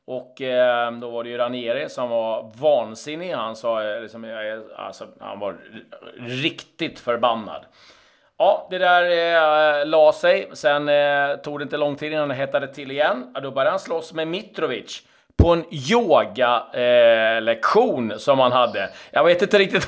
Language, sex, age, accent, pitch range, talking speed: Swedish, male, 30-49, native, 125-165 Hz, 165 wpm